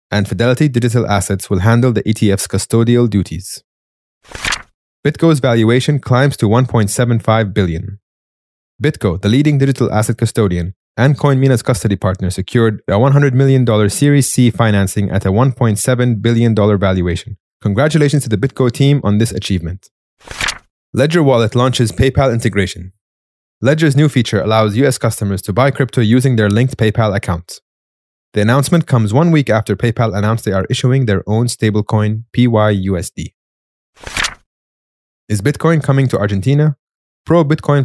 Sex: male